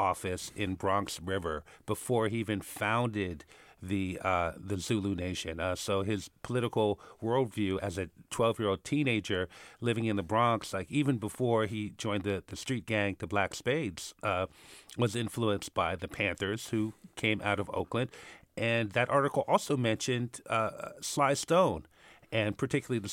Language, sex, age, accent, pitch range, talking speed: English, male, 50-69, American, 100-125 Hz, 155 wpm